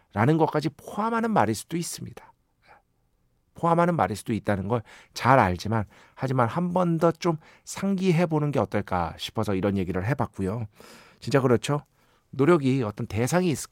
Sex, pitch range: male, 110-155 Hz